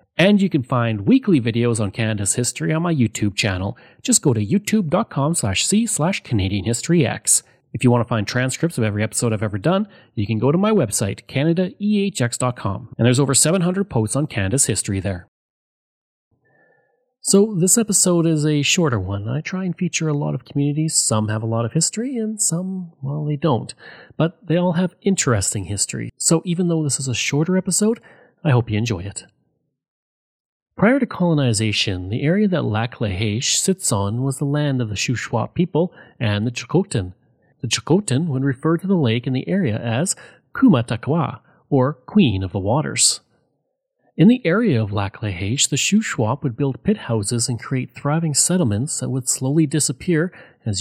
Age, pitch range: 30-49, 115-175 Hz